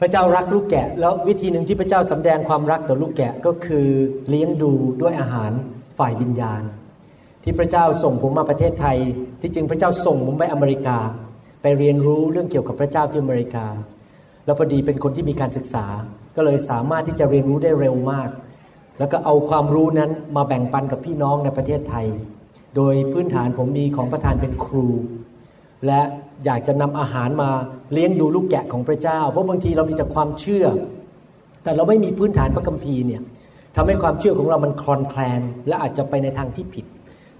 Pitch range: 130-165 Hz